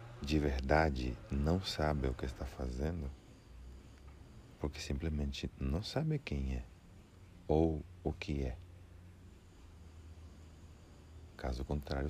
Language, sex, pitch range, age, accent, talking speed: Portuguese, male, 70-95 Hz, 40-59, Brazilian, 100 wpm